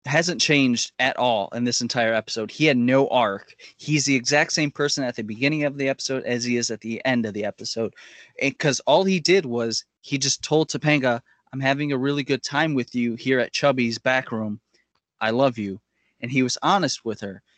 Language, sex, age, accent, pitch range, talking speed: English, male, 20-39, American, 115-140 Hz, 215 wpm